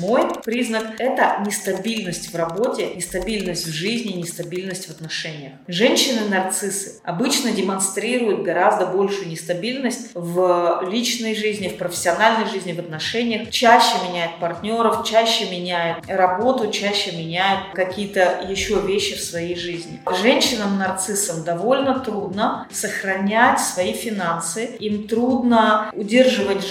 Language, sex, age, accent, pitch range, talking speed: Russian, female, 30-49, native, 180-235 Hz, 110 wpm